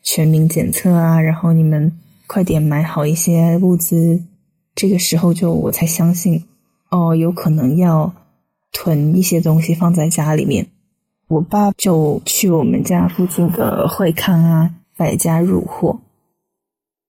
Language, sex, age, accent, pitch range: Chinese, female, 20-39, native, 155-180 Hz